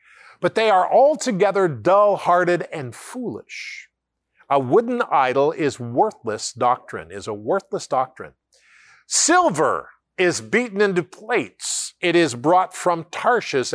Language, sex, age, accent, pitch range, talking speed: English, male, 50-69, American, 125-195 Hz, 120 wpm